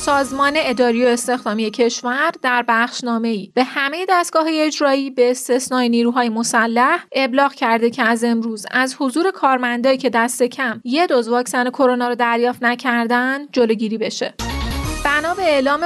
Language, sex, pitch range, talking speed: Persian, female, 245-310 Hz, 145 wpm